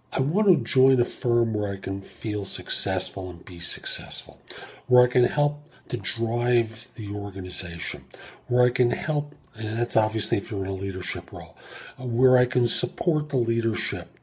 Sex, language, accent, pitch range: male, English, American, 100-125 Hz